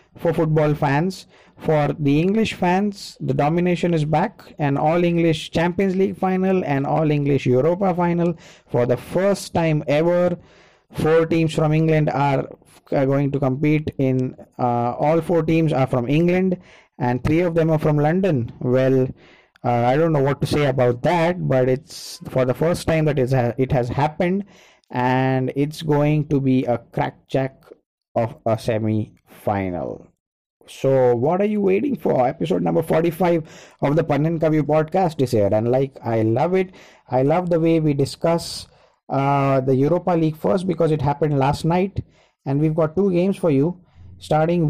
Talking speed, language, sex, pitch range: 170 wpm, English, male, 130-170 Hz